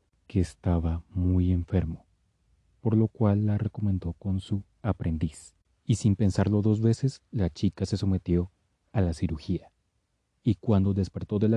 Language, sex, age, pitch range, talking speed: Spanish, male, 30-49, 85-100 Hz, 150 wpm